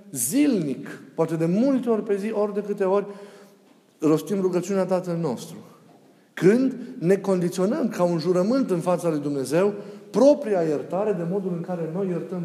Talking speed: 160 wpm